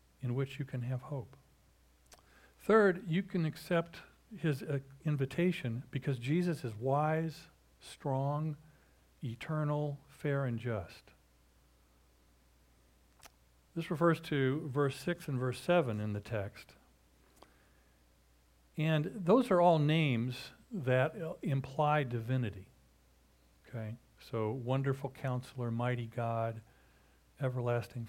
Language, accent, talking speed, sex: English, American, 105 wpm, male